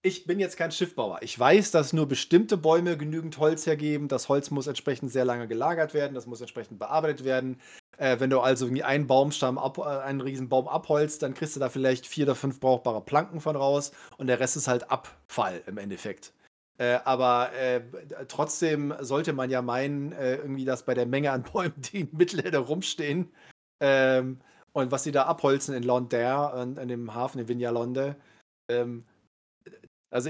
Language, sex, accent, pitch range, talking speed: German, male, German, 130-155 Hz, 185 wpm